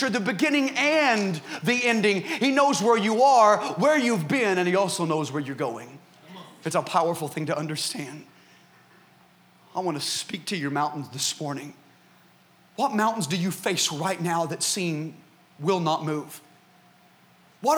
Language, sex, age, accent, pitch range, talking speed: English, male, 30-49, American, 155-230 Hz, 160 wpm